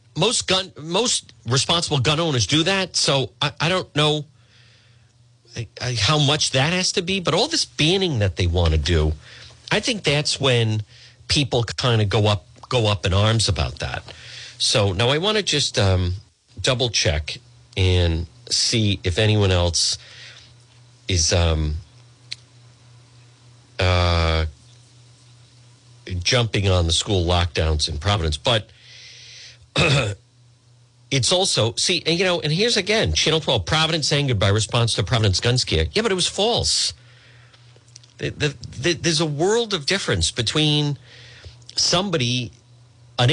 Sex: male